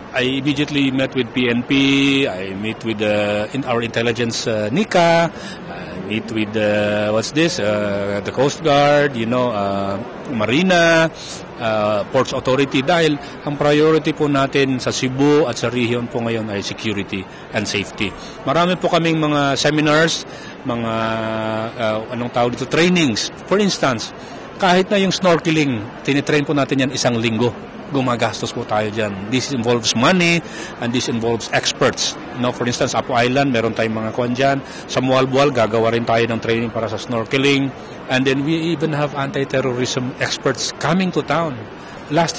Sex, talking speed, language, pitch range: male, 160 wpm, Filipino, 115-160 Hz